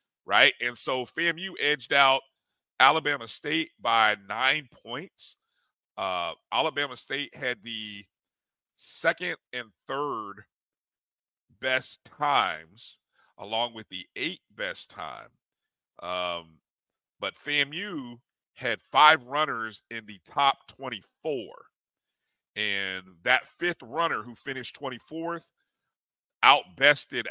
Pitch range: 100-135 Hz